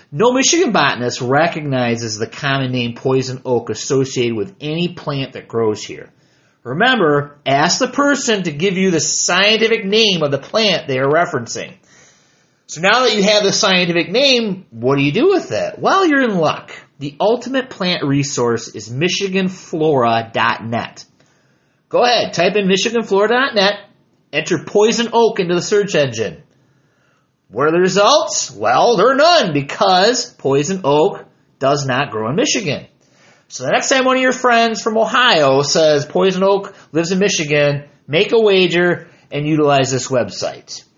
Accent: American